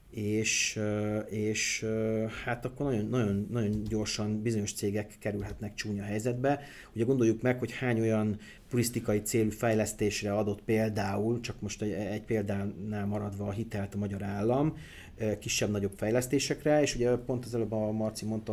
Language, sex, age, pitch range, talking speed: Hungarian, male, 30-49, 105-120 Hz, 145 wpm